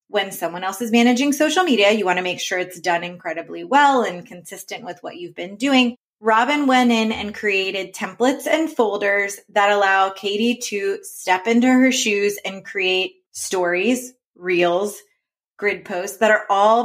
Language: English